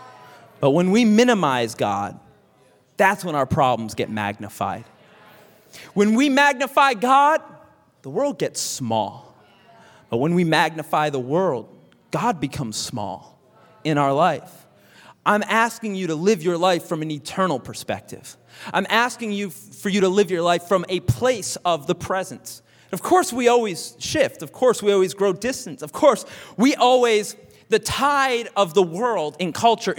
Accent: American